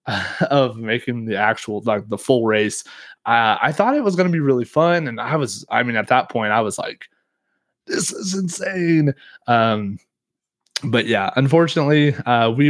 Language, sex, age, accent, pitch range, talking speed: English, male, 20-39, American, 115-145 Hz, 180 wpm